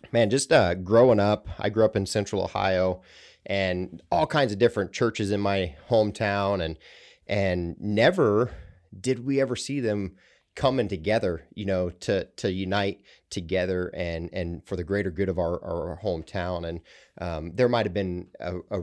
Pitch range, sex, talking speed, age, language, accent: 90-105 Hz, male, 170 wpm, 30-49, English, American